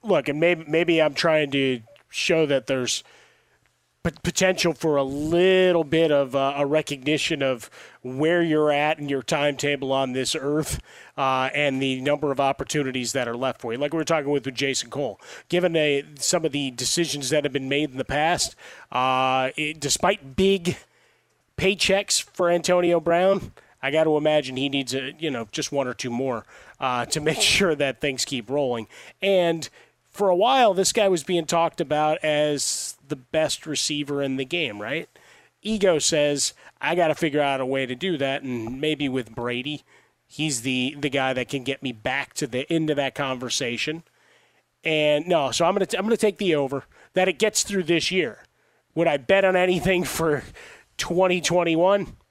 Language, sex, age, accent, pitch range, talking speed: English, male, 30-49, American, 135-170 Hz, 190 wpm